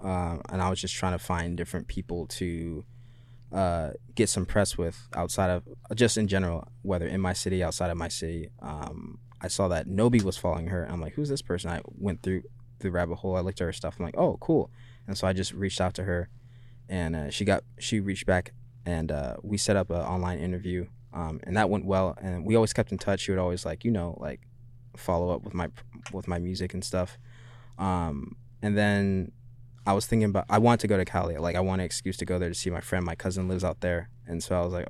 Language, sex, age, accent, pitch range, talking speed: English, male, 20-39, American, 90-110 Hz, 245 wpm